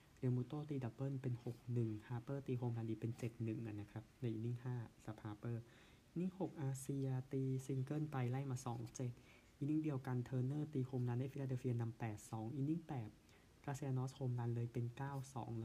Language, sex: Thai, male